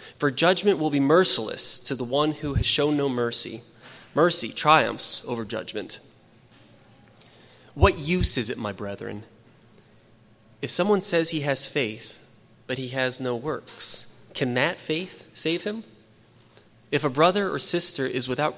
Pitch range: 115-165 Hz